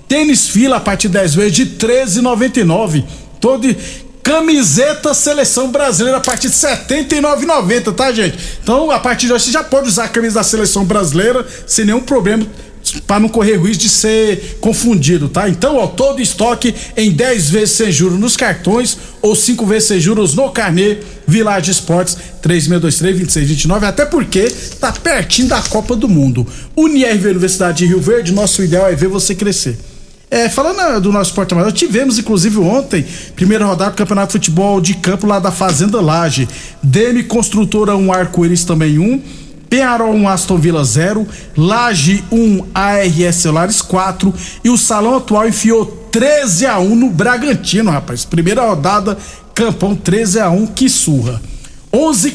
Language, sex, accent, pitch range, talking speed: Portuguese, male, Brazilian, 180-235 Hz, 160 wpm